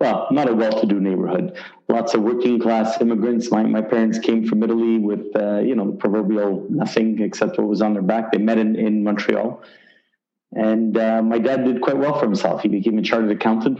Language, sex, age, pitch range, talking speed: English, male, 40-59, 105-120 Hz, 210 wpm